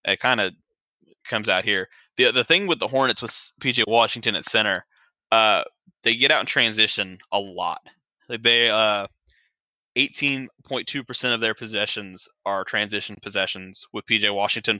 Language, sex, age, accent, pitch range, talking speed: English, male, 20-39, American, 100-115 Hz, 150 wpm